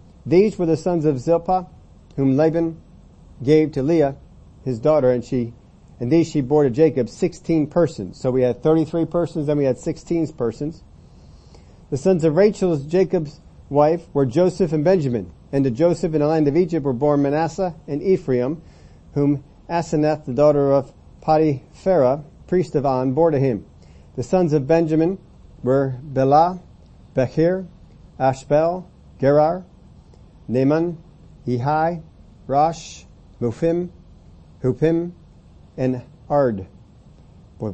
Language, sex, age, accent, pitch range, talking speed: English, male, 40-59, American, 130-170 Hz, 135 wpm